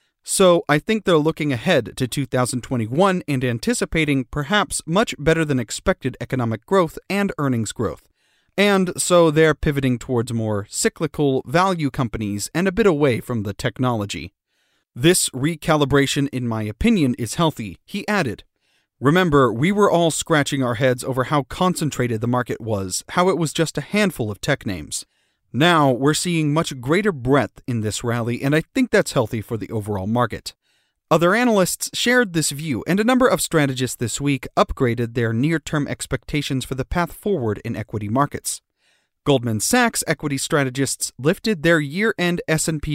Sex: male